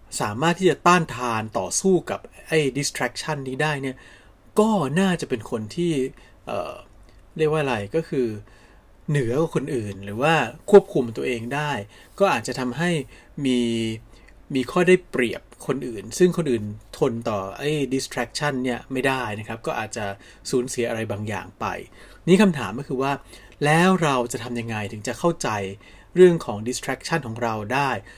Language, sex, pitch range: Thai, male, 105-145 Hz